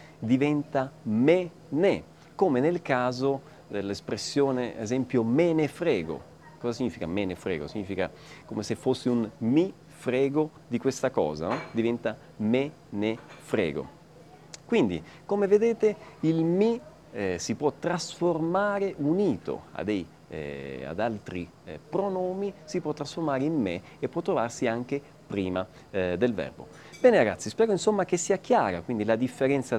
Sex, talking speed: male, 125 wpm